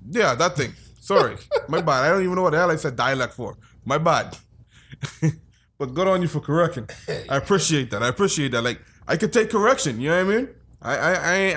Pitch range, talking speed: 115-145 Hz, 215 wpm